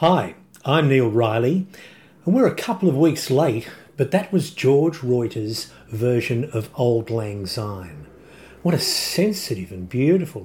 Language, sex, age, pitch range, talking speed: English, male, 50-69, 110-160 Hz, 150 wpm